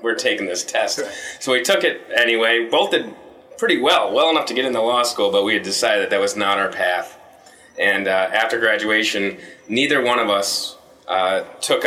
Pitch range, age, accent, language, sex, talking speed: 100-115 Hz, 30-49, American, English, male, 200 wpm